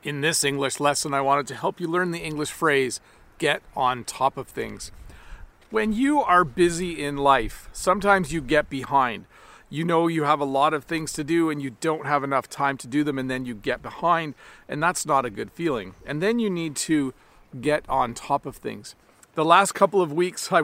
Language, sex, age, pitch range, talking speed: English, male, 40-59, 140-185 Hz, 215 wpm